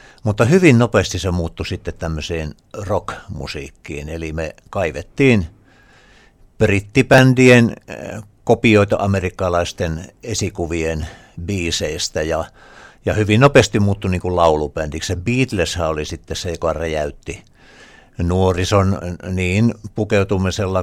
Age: 60-79